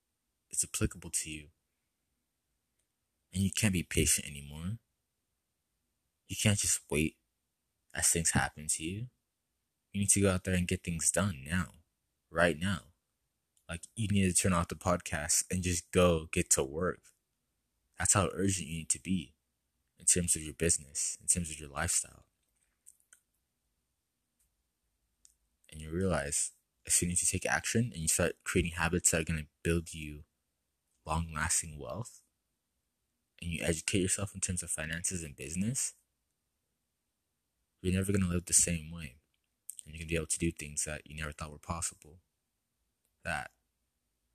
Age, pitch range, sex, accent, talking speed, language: 20-39, 75-90 Hz, male, American, 160 wpm, English